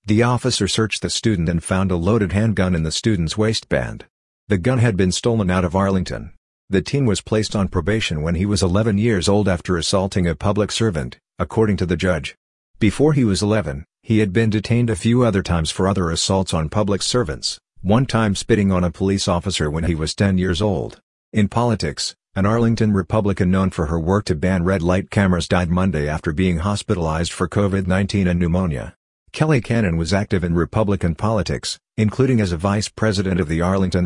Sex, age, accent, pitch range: male, 50-69, American, 90-105 Hz